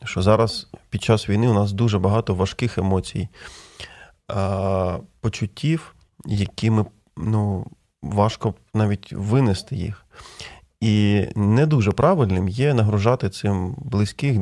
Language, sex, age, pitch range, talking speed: Ukrainian, male, 20-39, 105-130 Hz, 110 wpm